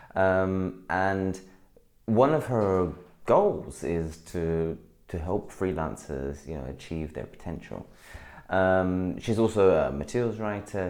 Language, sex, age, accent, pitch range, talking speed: English, male, 30-49, British, 75-105 Hz, 120 wpm